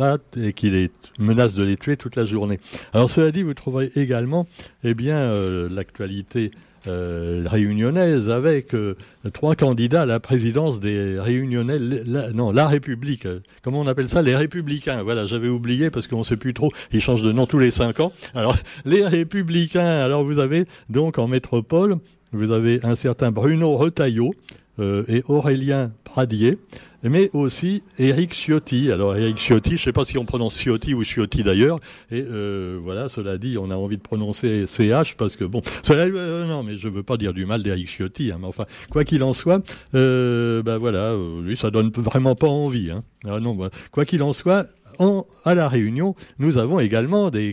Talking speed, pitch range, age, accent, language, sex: 190 wpm, 110-150 Hz, 60-79, French, French, male